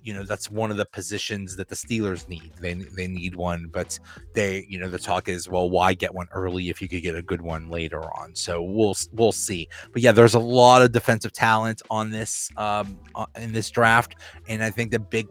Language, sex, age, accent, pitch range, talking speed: English, male, 30-49, American, 100-120 Hz, 230 wpm